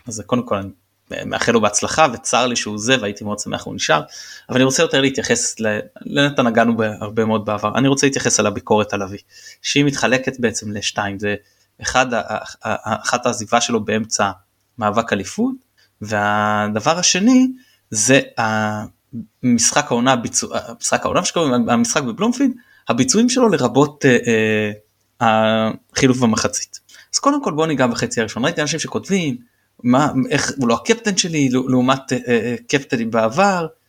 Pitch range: 115-155 Hz